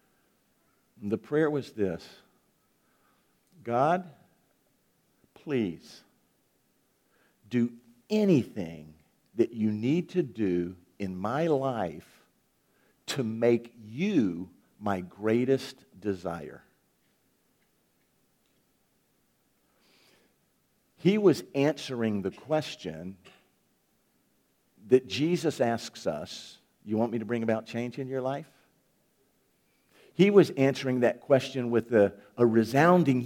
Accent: American